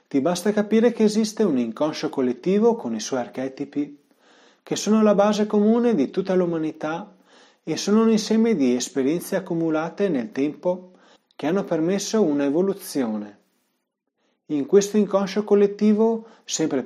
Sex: male